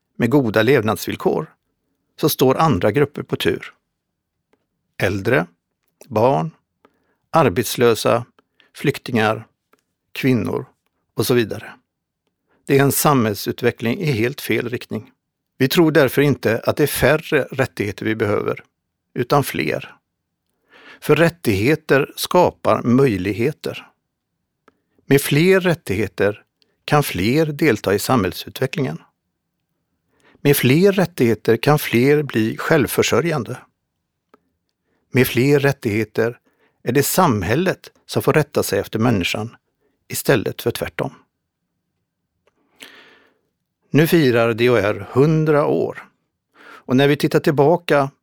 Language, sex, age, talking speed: Swedish, male, 60-79, 100 wpm